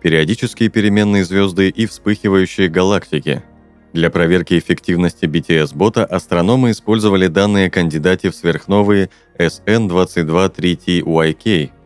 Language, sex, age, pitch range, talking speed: Russian, male, 30-49, 80-100 Hz, 85 wpm